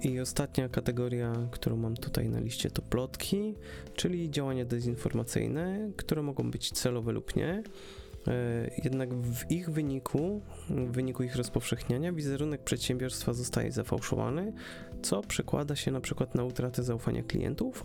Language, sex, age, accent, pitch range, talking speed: Polish, male, 30-49, native, 115-135 Hz, 135 wpm